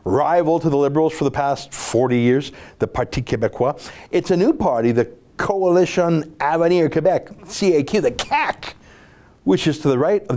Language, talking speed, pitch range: English, 170 wpm, 120-170 Hz